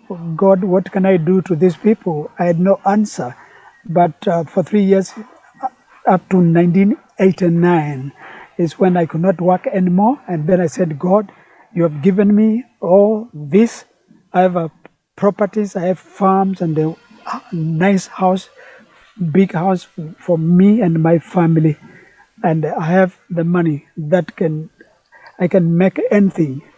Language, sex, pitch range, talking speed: English, male, 165-195 Hz, 150 wpm